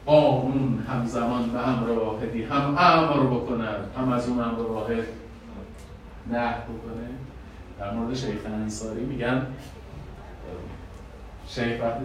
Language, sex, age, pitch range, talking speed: Persian, male, 40-59, 95-145 Hz, 110 wpm